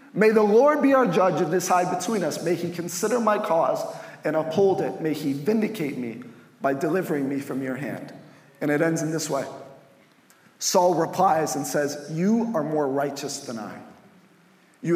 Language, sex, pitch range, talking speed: English, male, 155-220 Hz, 185 wpm